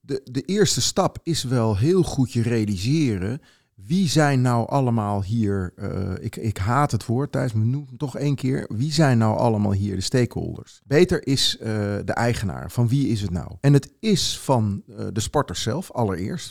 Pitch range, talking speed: 105-140 Hz, 195 wpm